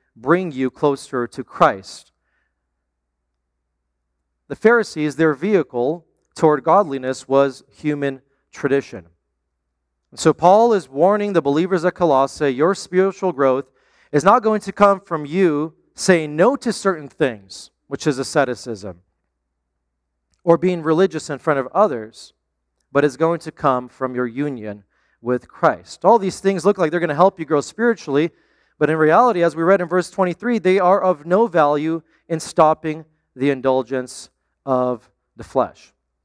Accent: American